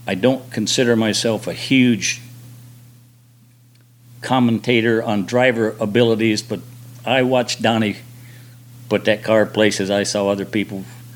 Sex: male